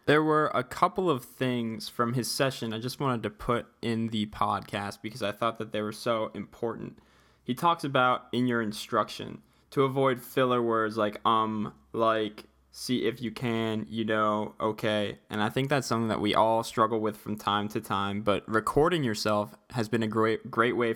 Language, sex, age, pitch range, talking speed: English, male, 10-29, 110-130 Hz, 195 wpm